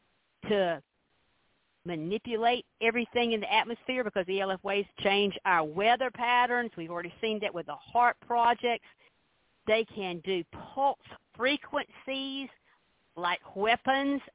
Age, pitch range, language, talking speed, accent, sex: 50-69, 195-260 Hz, English, 120 wpm, American, female